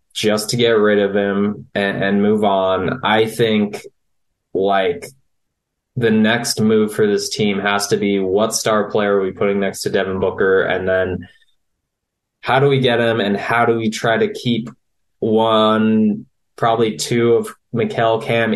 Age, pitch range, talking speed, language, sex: 20-39, 105-125 Hz, 170 wpm, English, male